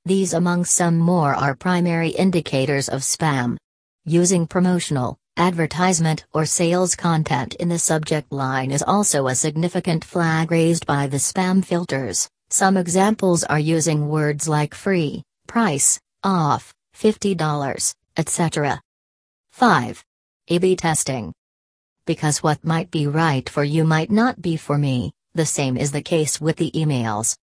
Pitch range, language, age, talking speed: 145-175 Hz, English, 40-59, 135 wpm